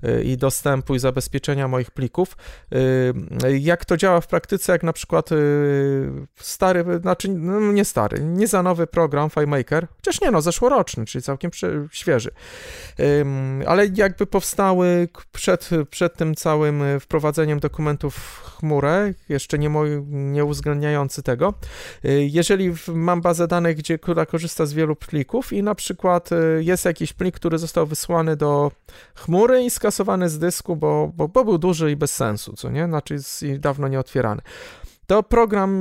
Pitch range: 150-200 Hz